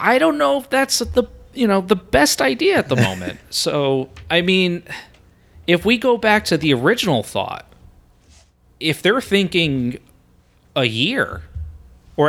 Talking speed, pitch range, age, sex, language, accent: 150 wpm, 100-145 Hz, 30-49, male, English, American